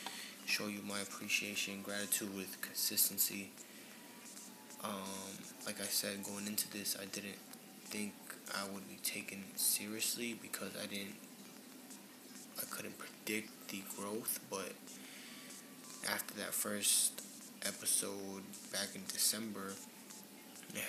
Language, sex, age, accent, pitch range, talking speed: English, male, 20-39, American, 100-110 Hz, 110 wpm